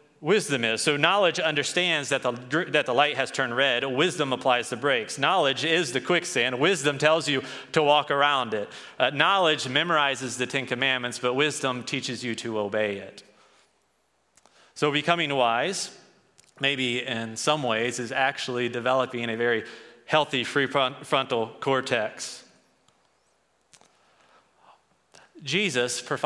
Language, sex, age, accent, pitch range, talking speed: English, male, 30-49, American, 125-150 Hz, 130 wpm